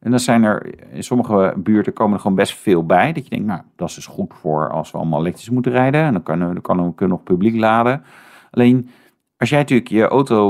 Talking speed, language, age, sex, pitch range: 255 wpm, Dutch, 50-69, male, 95-125 Hz